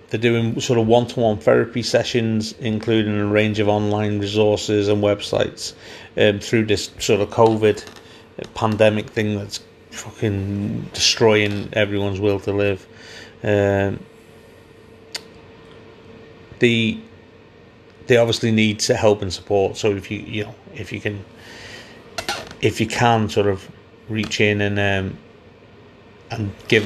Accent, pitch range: British, 100-115 Hz